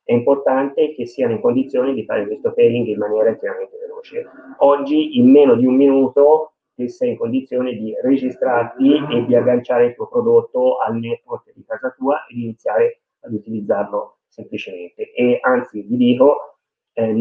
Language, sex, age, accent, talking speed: Italian, male, 30-49, native, 165 wpm